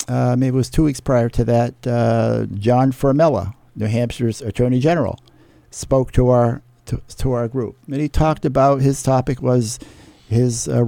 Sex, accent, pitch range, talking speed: male, American, 115-135 Hz, 175 wpm